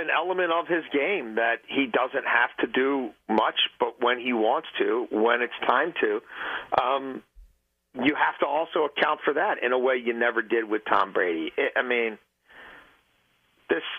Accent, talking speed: American, 175 wpm